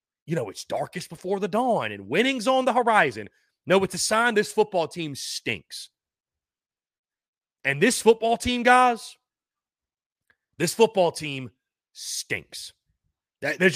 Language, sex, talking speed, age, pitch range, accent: English, male, 130 wpm, 30-49, 160-205 Hz, American